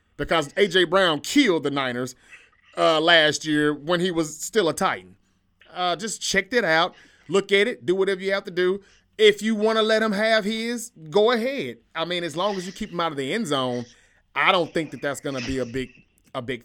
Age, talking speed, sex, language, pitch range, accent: 30-49, 230 wpm, male, English, 140-190 Hz, American